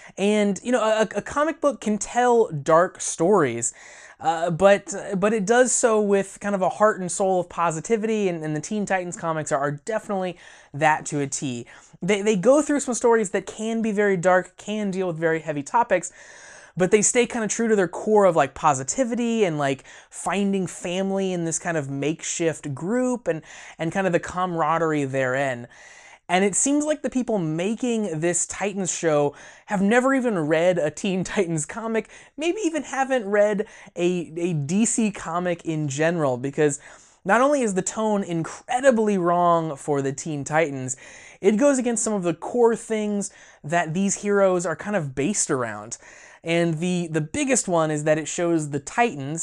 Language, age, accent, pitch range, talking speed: English, 20-39, American, 160-215 Hz, 185 wpm